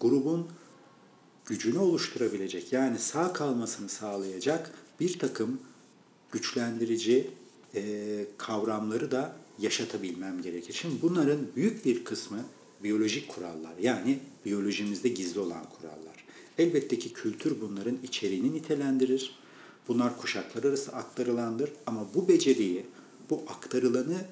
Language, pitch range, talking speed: Turkish, 105-165 Hz, 105 wpm